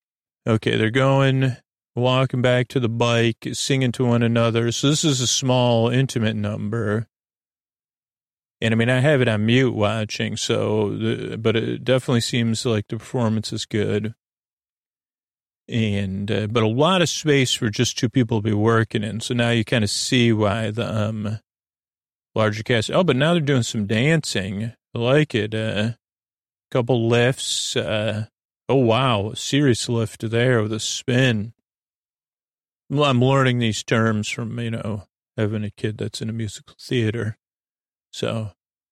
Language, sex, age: English, male, 40-59